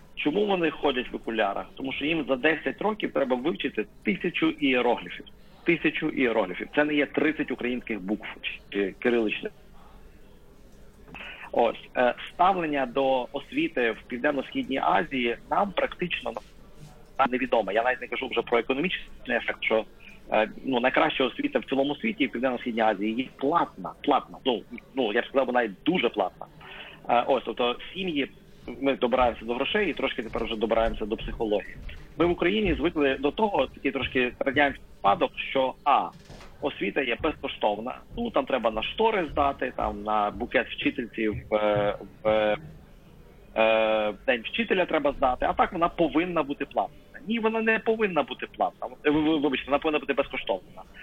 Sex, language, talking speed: male, Ukrainian, 155 wpm